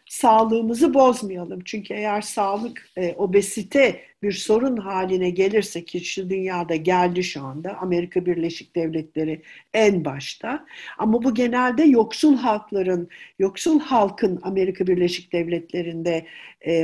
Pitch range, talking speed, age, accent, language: 185-235 Hz, 120 wpm, 60-79, native, Turkish